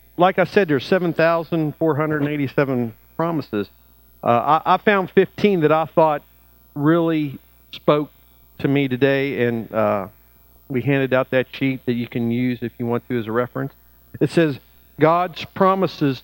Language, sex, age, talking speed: English, male, 50-69, 165 wpm